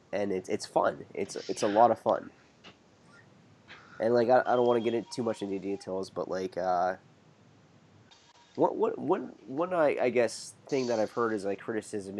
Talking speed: 185 wpm